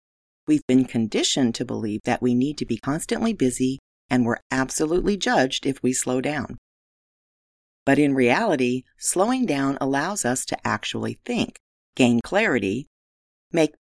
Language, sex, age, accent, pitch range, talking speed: English, female, 40-59, American, 120-180 Hz, 145 wpm